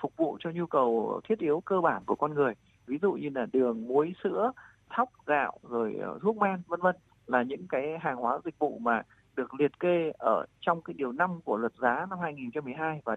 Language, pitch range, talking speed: Vietnamese, 135-185 Hz, 220 wpm